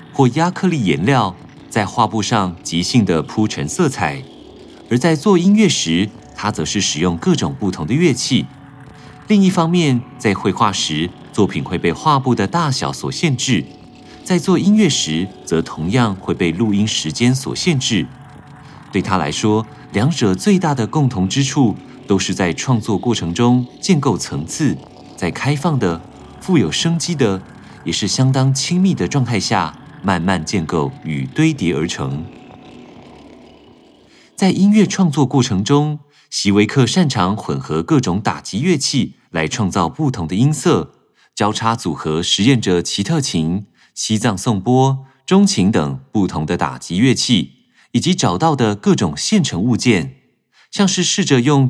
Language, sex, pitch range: Chinese, male, 95-150 Hz